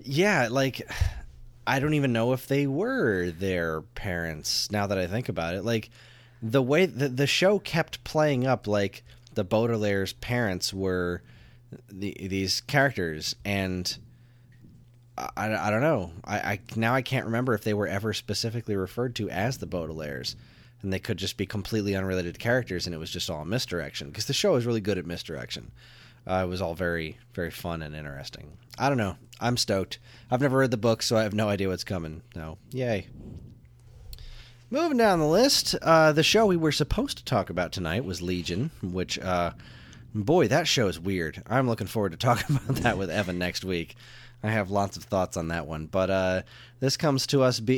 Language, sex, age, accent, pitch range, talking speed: English, male, 20-39, American, 95-125 Hz, 195 wpm